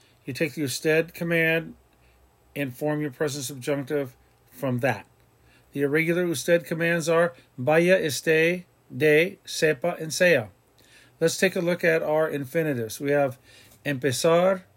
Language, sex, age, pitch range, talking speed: English, male, 50-69, 135-165 Hz, 135 wpm